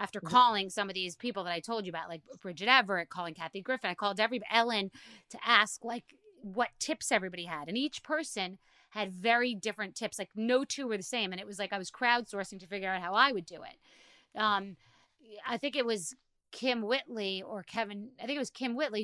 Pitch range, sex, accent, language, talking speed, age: 200-245 Hz, female, American, English, 225 wpm, 30-49